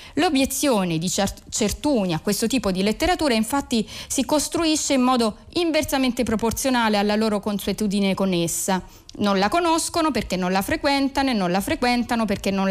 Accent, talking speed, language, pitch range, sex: native, 155 wpm, Italian, 195-250 Hz, female